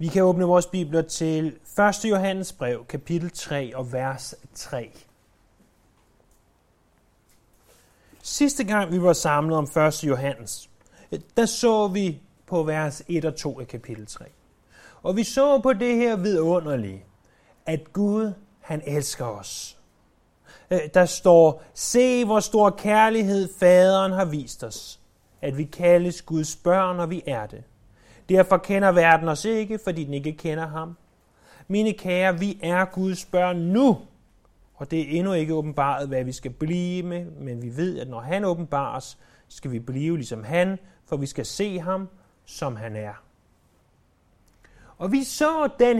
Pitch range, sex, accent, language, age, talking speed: 135-195 Hz, male, native, Danish, 30-49, 155 wpm